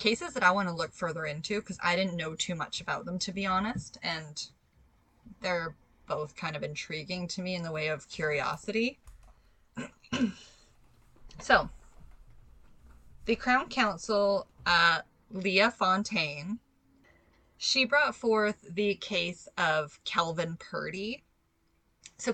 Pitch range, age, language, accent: 160-205 Hz, 20-39, English, American